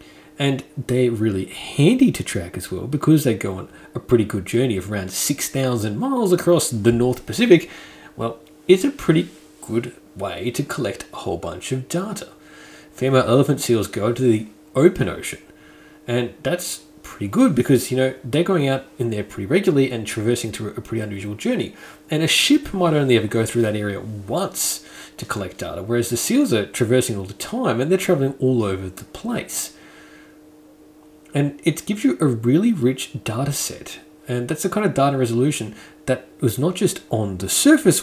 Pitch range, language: 115-155 Hz, English